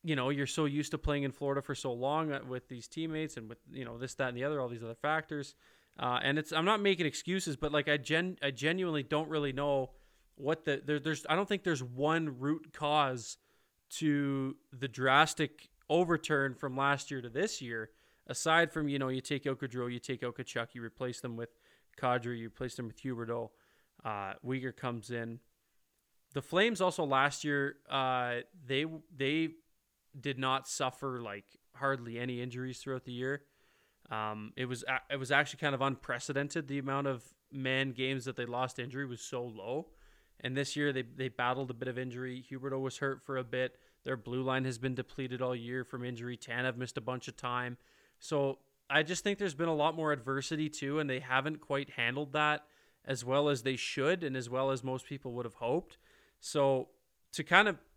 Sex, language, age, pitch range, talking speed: male, English, 20-39, 125-150 Hz, 205 wpm